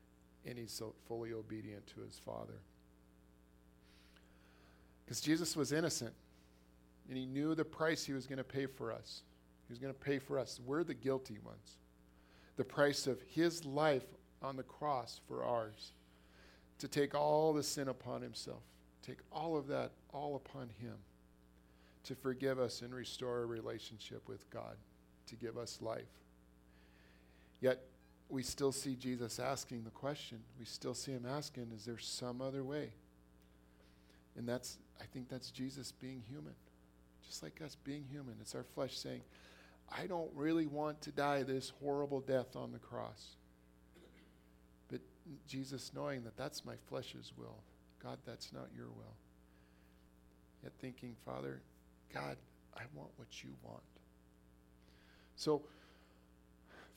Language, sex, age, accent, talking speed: English, male, 40-59, American, 150 wpm